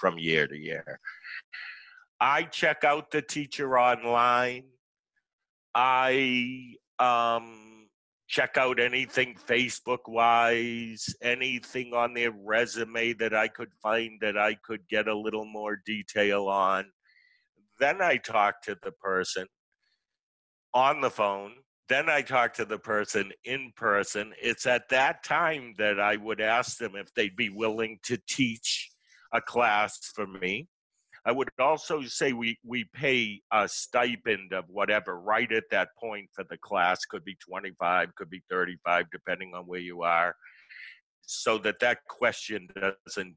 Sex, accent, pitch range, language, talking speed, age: male, American, 100-125 Hz, English, 145 wpm, 50-69